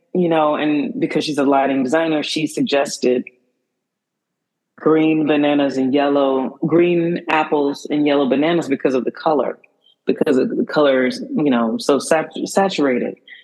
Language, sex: English, female